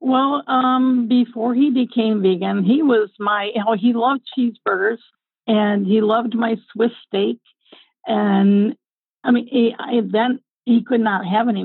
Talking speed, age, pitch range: 160 wpm, 50-69, 195-235 Hz